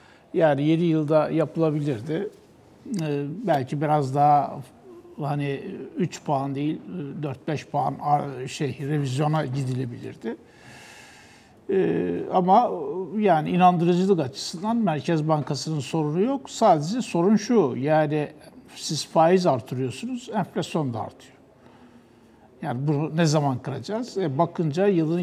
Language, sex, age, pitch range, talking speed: Turkish, male, 60-79, 135-180 Hz, 105 wpm